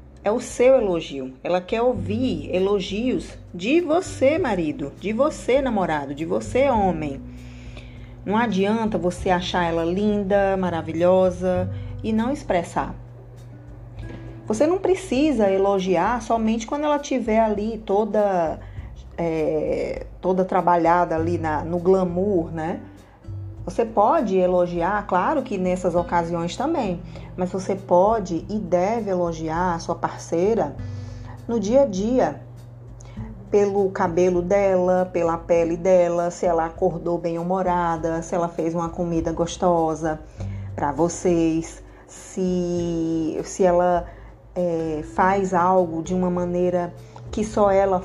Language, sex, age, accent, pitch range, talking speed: Portuguese, female, 20-39, Brazilian, 165-195 Hz, 120 wpm